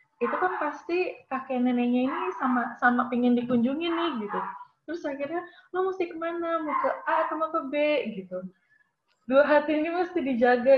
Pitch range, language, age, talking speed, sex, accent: 205-295 Hz, English, 20-39, 150 wpm, female, Indonesian